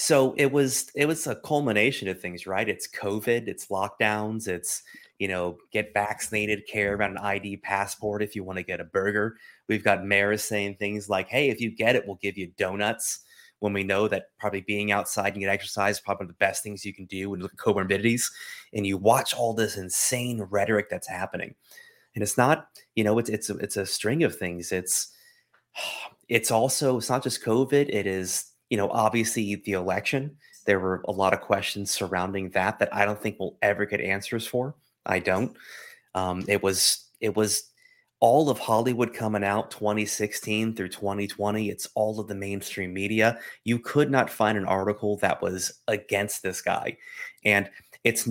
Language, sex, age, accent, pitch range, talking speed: English, male, 30-49, American, 100-115 Hz, 190 wpm